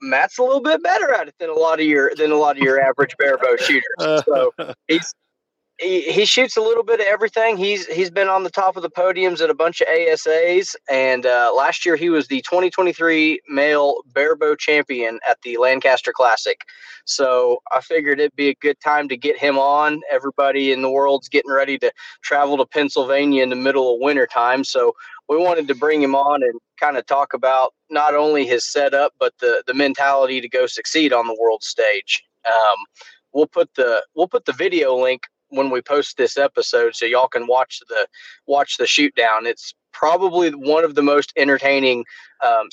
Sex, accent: male, American